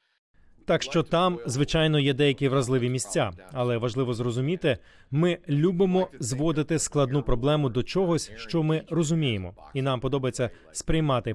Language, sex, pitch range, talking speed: Ukrainian, male, 120-155 Hz, 130 wpm